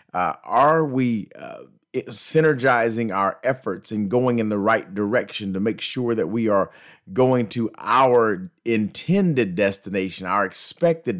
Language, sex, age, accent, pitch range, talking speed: English, male, 40-59, American, 105-130 Hz, 140 wpm